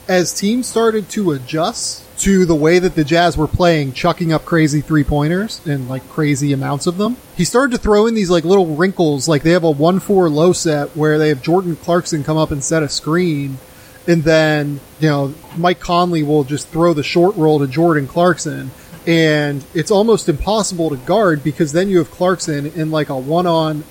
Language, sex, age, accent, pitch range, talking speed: English, male, 30-49, American, 145-170 Hz, 205 wpm